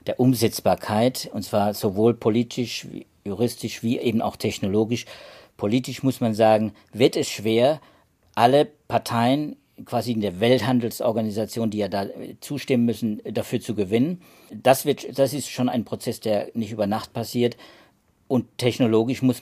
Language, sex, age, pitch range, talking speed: German, male, 50-69, 105-125 Hz, 150 wpm